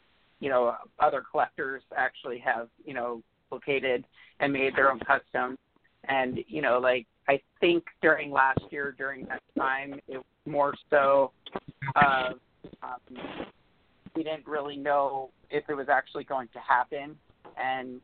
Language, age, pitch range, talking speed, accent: English, 40-59, 130-145 Hz, 145 wpm, American